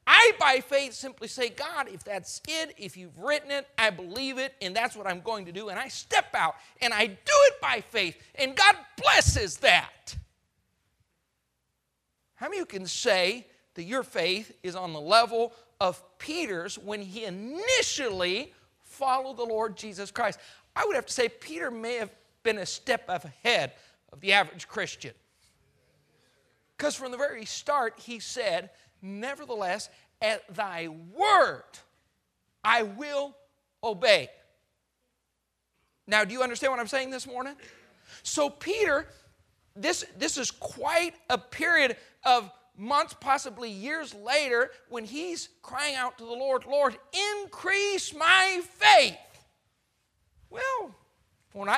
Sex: male